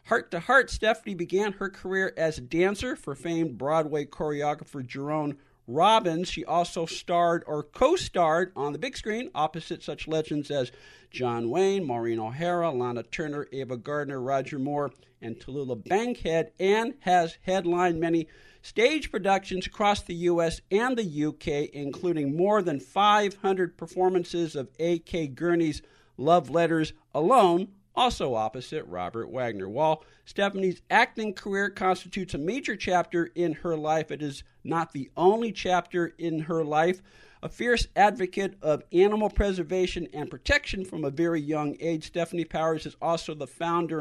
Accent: American